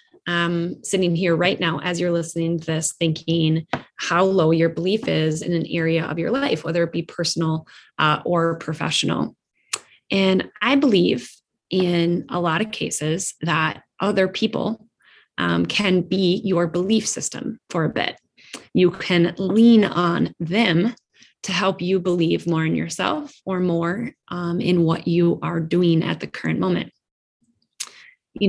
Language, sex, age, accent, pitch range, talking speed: English, female, 20-39, American, 170-210 Hz, 155 wpm